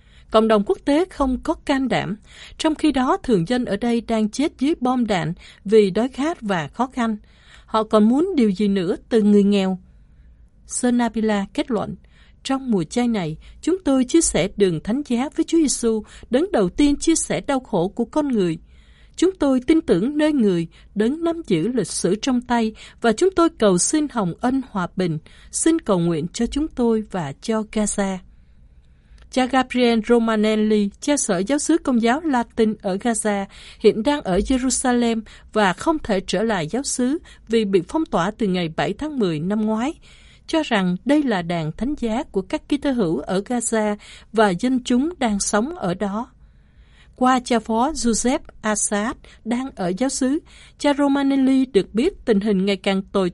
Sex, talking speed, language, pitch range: female, 185 wpm, Vietnamese, 200-270 Hz